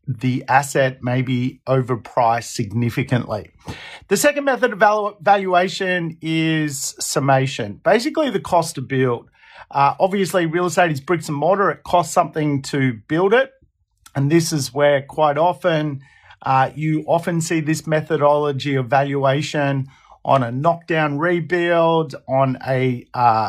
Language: English